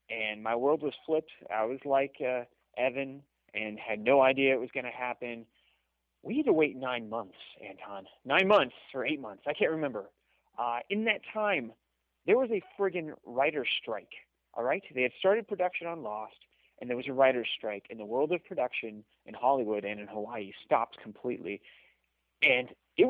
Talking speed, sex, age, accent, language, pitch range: 185 wpm, male, 30-49, American, English, 110-155 Hz